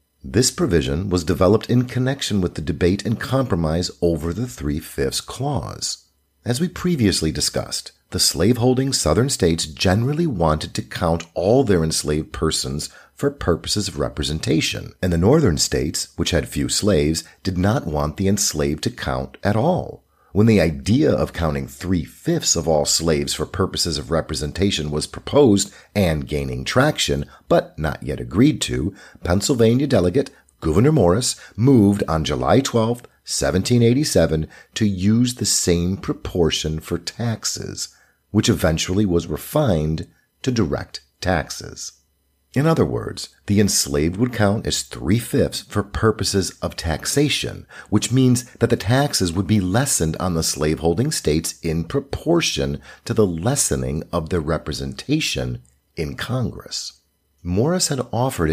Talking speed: 140 wpm